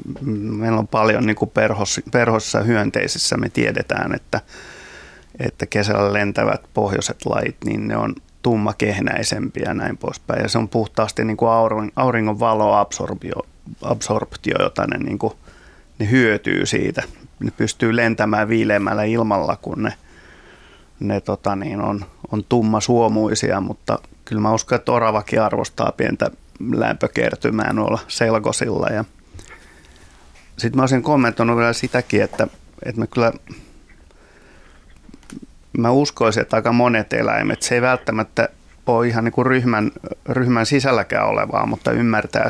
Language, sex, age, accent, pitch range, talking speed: Finnish, male, 30-49, native, 105-120 Hz, 125 wpm